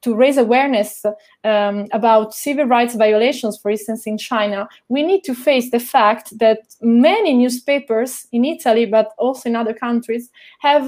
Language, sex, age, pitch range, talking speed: Italian, female, 20-39, 235-295 Hz, 160 wpm